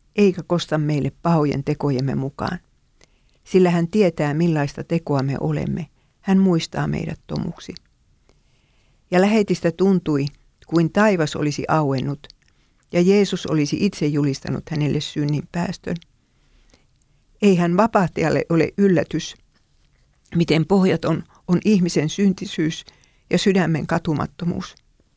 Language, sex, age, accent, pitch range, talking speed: Finnish, female, 50-69, native, 155-185 Hz, 105 wpm